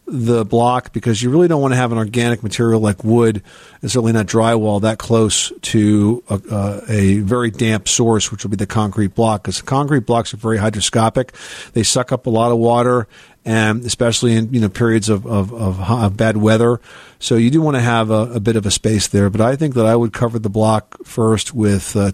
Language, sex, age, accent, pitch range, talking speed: English, male, 50-69, American, 110-125 Hz, 230 wpm